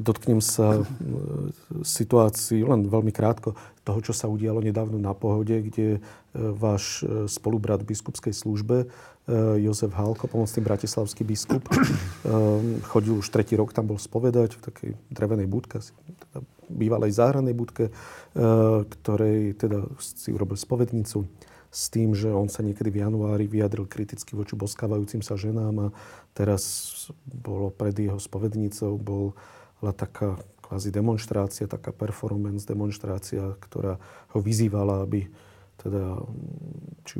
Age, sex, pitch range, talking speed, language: 40-59, male, 105-115 Hz, 125 wpm, Slovak